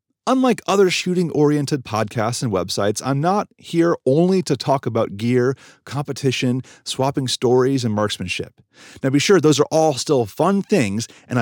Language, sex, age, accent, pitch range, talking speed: English, male, 30-49, American, 115-165 Hz, 150 wpm